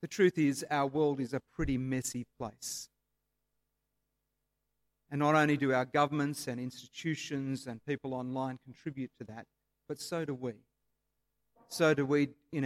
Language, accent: English, Australian